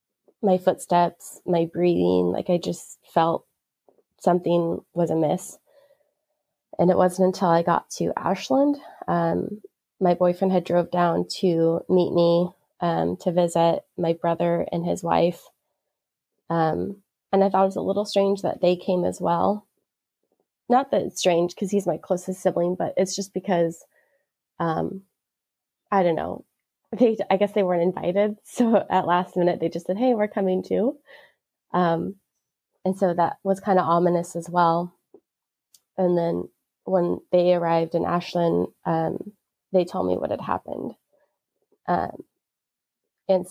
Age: 20-39